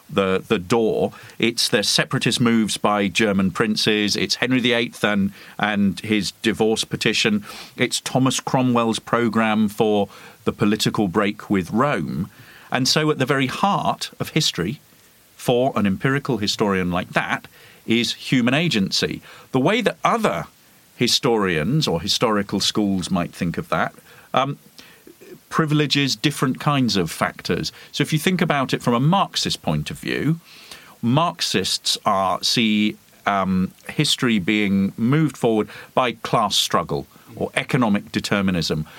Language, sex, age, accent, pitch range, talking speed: English, male, 40-59, British, 105-135 Hz, 135 wpm